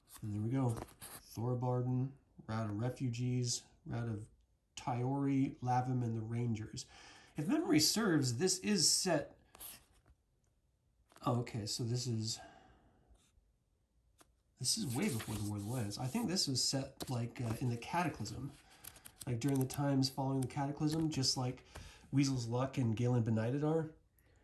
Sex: male